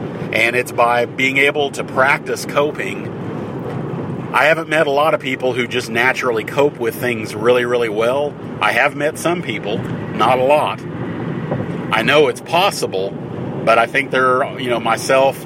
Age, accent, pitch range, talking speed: 40-59, American, 115-135 Hz, 170 wpm